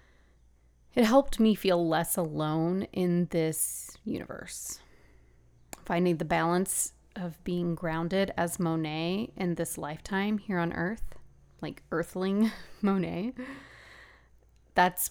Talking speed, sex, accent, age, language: 105 wpm, female, American, 30-49, English